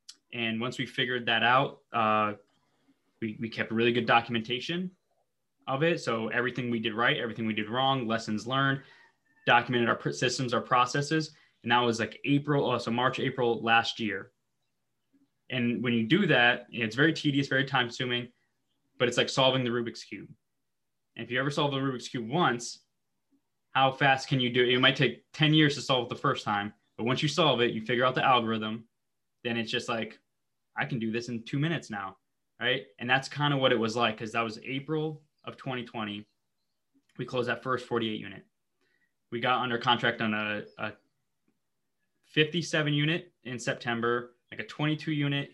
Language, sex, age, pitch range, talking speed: English, male, 20-39, 115-135 Hz, 190 wpm